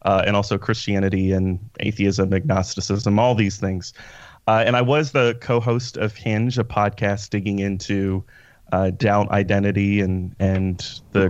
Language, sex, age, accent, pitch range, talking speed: English, male, 30-49, American, 100-125 Hz, 150 wpm